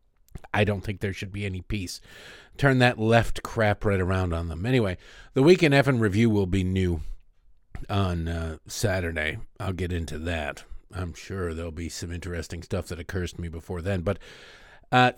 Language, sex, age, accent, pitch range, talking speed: English, male, 50-69, American, 95-125 Hz, 180 wpm